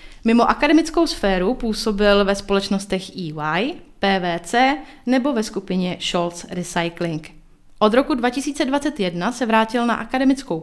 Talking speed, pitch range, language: 115 wpm, 185-255 Hz, Czech